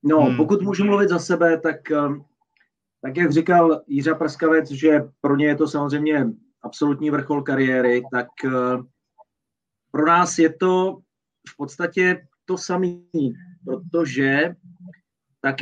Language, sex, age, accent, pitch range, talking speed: Czech, male, 30-49, native, 130-160 Hz, 125 wpm